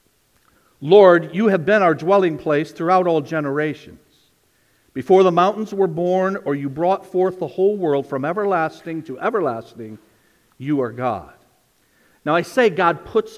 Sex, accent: male, American